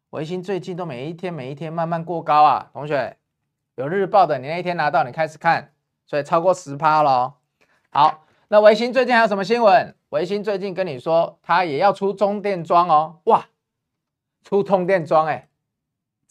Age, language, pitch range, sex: 20-39, Chinese, 145-200 Hz, male